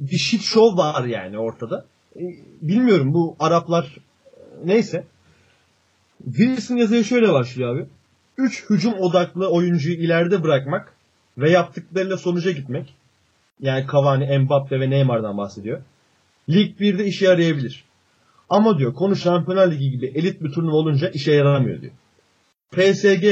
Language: Turkish